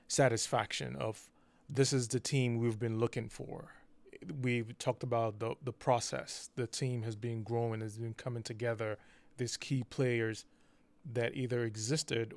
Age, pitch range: 20-39, 115-125 Hz